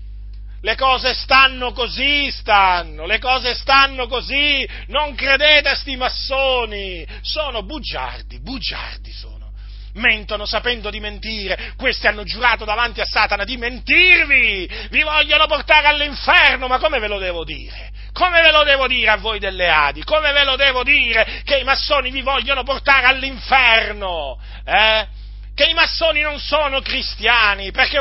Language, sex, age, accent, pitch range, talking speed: Italian, male, 40-59, native, 190-265 Hz, 150 wpm